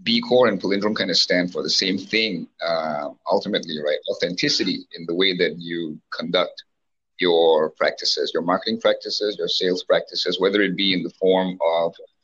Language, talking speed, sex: English, 175 wpm, male